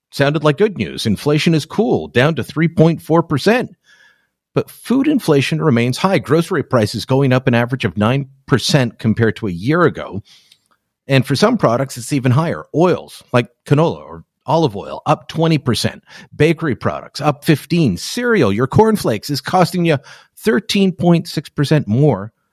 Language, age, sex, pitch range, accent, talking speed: English, 50-69, male, 115-160 Hz, American, 145 wpm